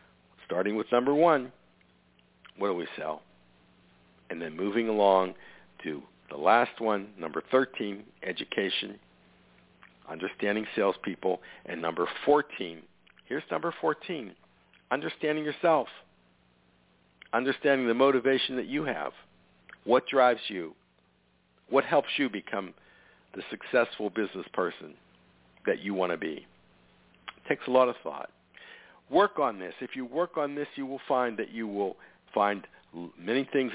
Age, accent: 60-79, American